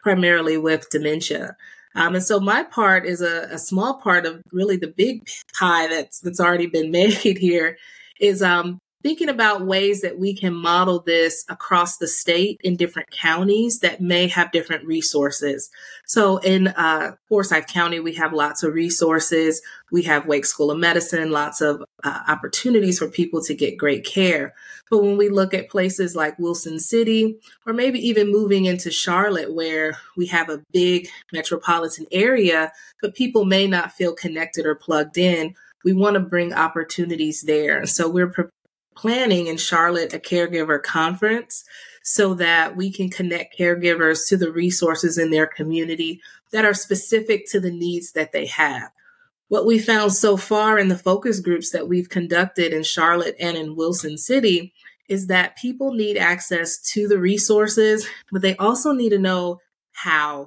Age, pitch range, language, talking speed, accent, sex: 30-49, 165-200 Hz, English, 170 wpm, American, female